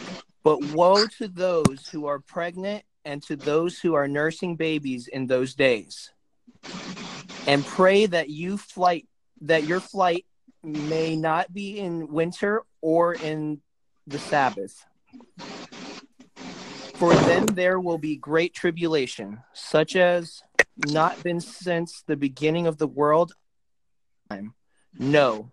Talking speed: 120 wpm